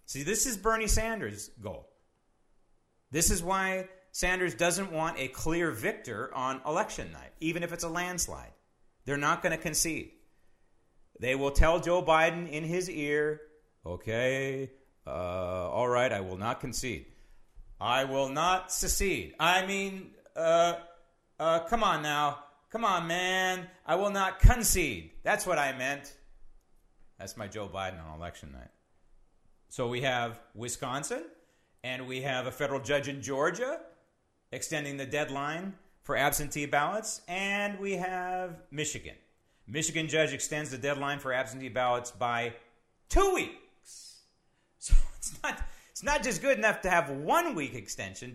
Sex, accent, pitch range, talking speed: male, American, 120-180 Hz, 145 wpm